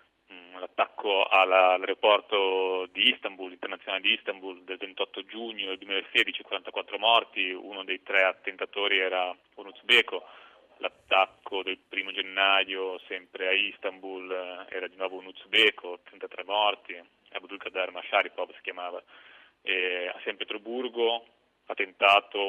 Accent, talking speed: native, 100 wpm